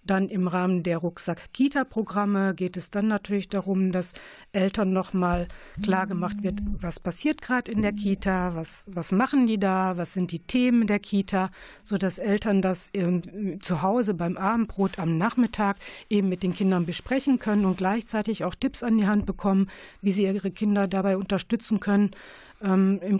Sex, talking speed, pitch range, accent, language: female, 165 wpm, 185-210 Hz, German, German